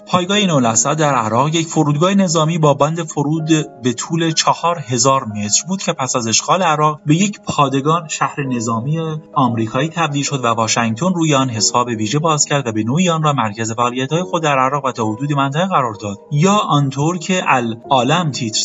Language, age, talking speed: Persian, 30-49, 185 wpm